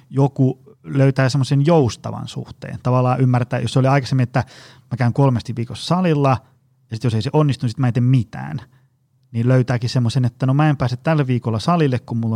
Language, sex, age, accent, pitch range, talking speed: Finnish, male, 30-49, native, 120-145 Hz, 200 wpm